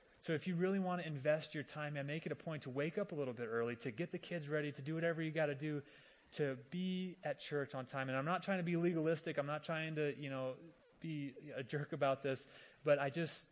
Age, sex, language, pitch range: 30-49, male, English, 125-155 Hz